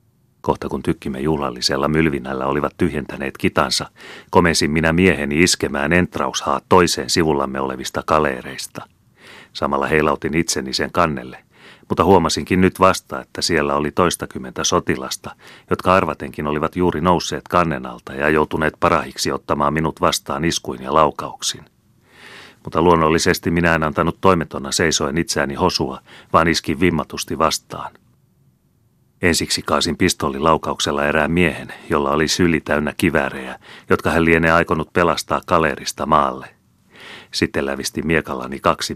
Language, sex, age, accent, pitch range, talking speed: Finnish, male, 30-49, native, 70-85 Hz, 125 wpm